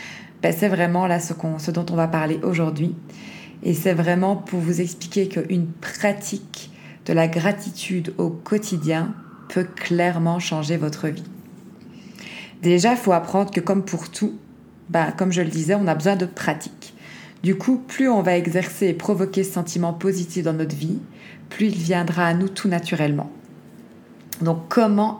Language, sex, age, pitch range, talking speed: French, female, 20-39, 165-200 Hz, 170 wpm